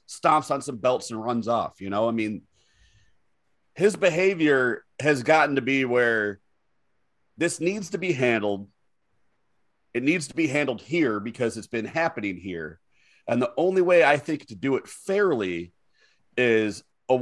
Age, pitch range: 30-49, 110-150 Hz